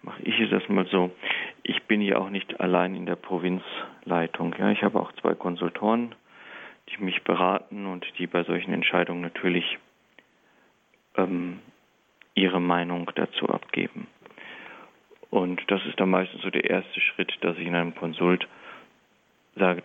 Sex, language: male, German